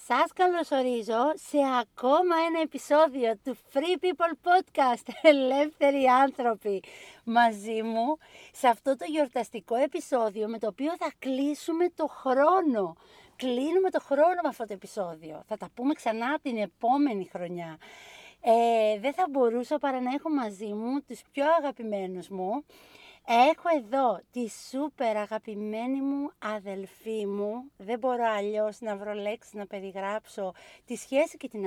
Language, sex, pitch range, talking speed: Greek, female, 225-295 Hz, 140 wpm